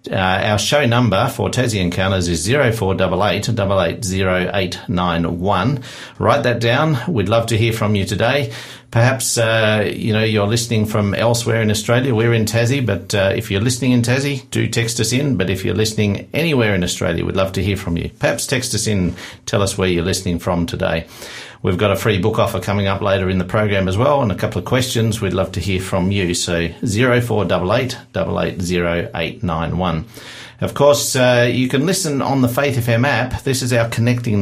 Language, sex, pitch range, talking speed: English, male, 95-120 Hz, 190 wpm